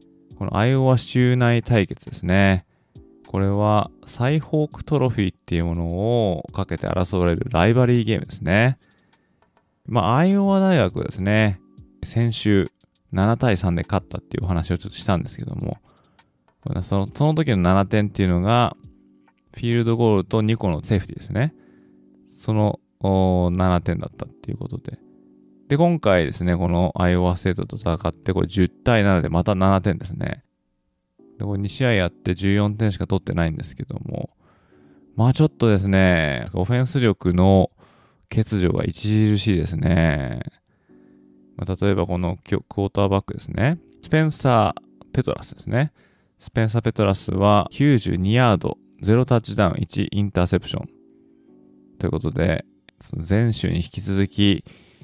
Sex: male